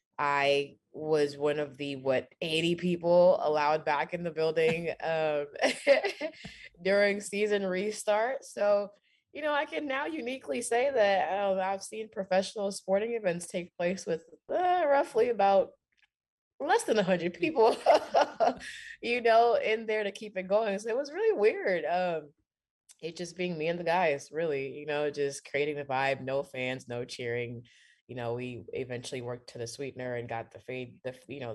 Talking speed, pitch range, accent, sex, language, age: 170 wpm, 145-210 Hz, American, female, English, 20-39